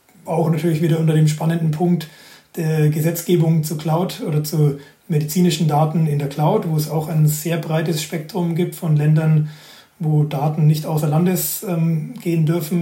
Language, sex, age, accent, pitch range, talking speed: German, male, 30-49, German, 150-170 Hz, 170 wpm